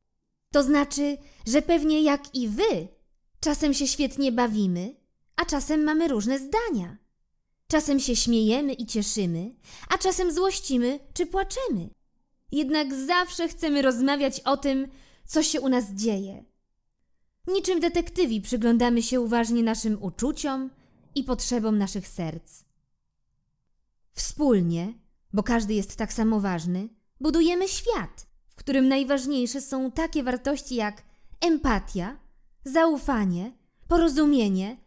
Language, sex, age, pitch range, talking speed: Polish, female, 20-39, 220-300 Hz, 115 wpm